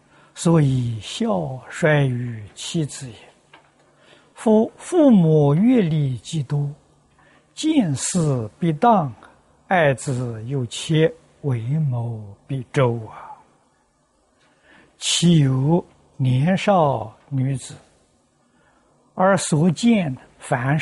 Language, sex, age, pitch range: Chinese, male, 60-79, 125-170 Hz